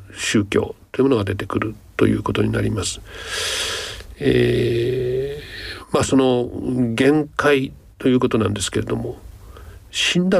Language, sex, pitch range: Japanese, male, 95-130 Hz